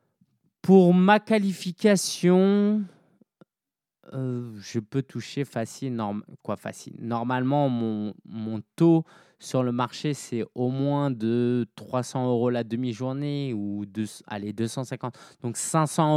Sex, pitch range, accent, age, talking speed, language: male, 115-155 Hz, French, 20-39, 120 wpm, French